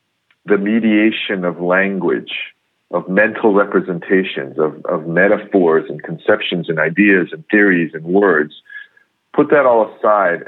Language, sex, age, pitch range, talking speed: English, male, 40-59, 95-110 Hz, 125 wpm